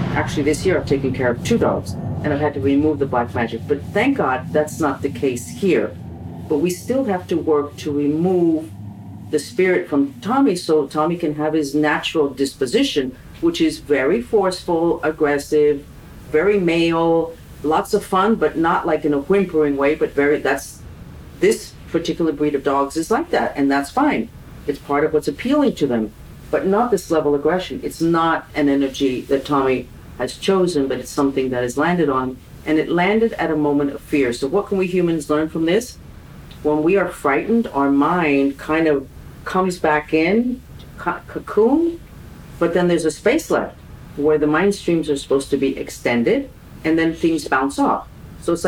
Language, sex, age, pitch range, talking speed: Spanish, female, 50-69, 140-170 Hz, 190 wpm